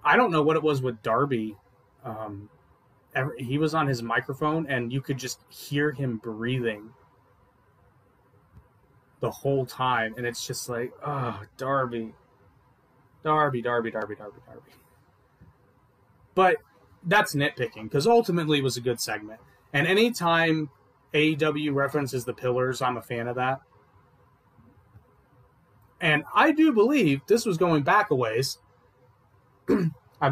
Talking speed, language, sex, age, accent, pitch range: 135 wpm, English, male, 30-49, American, 120-155 Hz